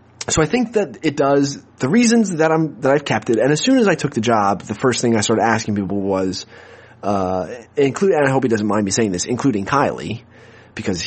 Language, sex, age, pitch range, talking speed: English, male, 30-49, 105-140 Hz, 240 wpm